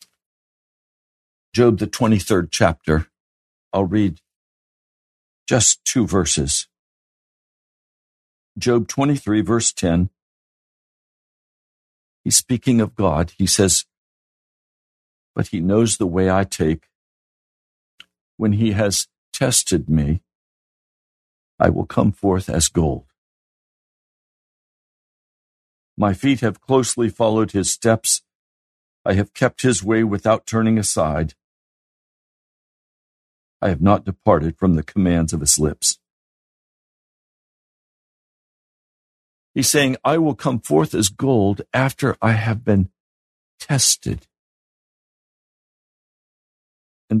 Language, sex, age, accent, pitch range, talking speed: English, male, 60-79, American, 75-110 Hz, 95 wpm